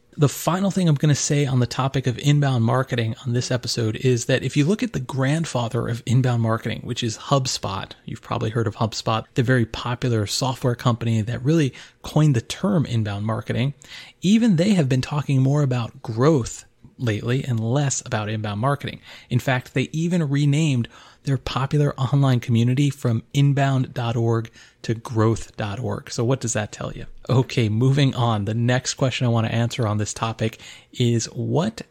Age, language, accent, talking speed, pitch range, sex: 30-49, English, American, 180 wpm, 115-145 Hz, male